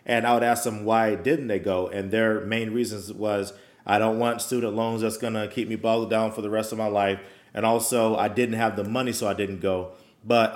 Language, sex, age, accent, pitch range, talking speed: English, male, 30-49, American, 105-120 Hz, 250 wpm